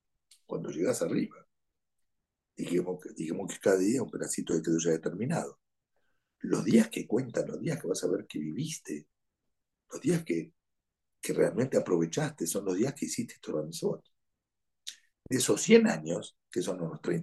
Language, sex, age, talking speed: Spanish, male, 60-79, 155 wpm